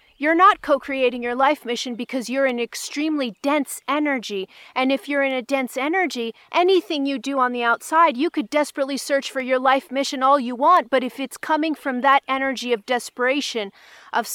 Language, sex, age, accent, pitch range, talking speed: English, female, 40-59, American, 225-280 Hz, 190 wpm